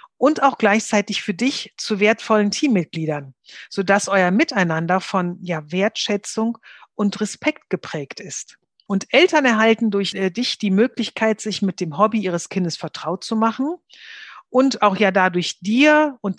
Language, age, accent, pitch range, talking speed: German, 40-59, German, 180-225 Hz, 145 wpm